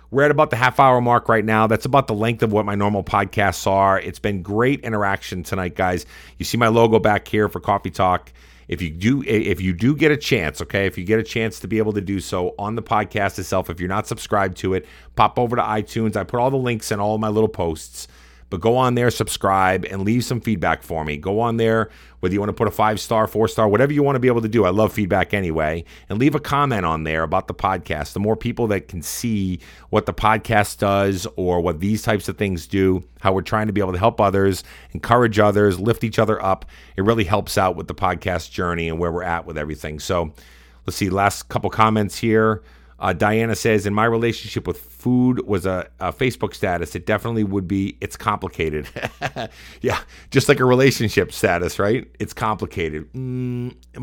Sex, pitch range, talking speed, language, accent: male, 95-115 Hz, 225 wpm, English, American